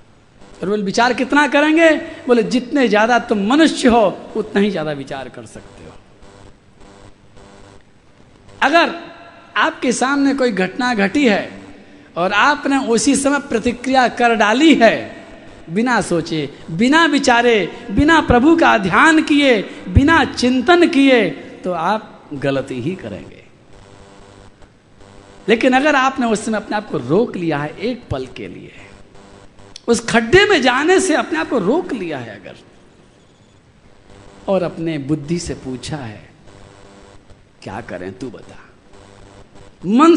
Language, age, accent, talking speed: Hindi, 50-69, native, 130 wpm